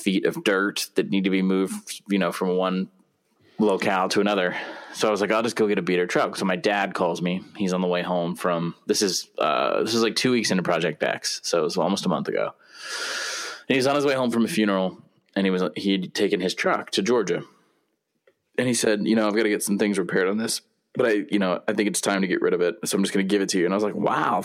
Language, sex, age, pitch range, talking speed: English, male, 20-39, 95-110 Hz, 280 wpm